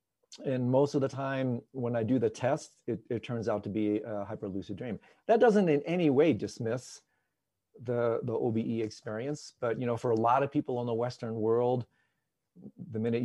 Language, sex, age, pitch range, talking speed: English, male, 40-59, 105-135 Hz, 195 wpm